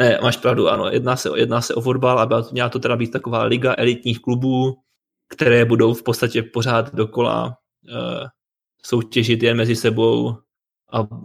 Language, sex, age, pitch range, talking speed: Czech, male, 20-39, 115-120 Hz, 160 wpm